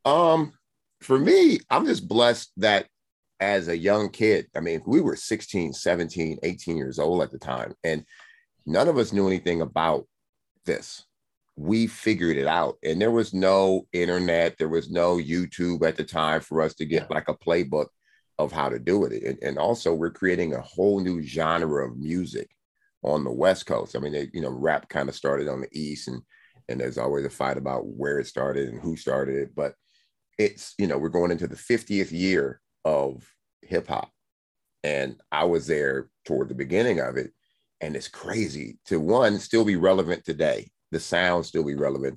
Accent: American